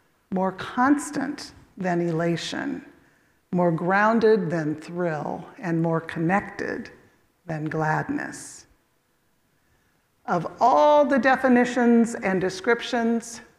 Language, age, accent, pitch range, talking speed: English, 50-69, American, 180-245 Hz, 85 wpm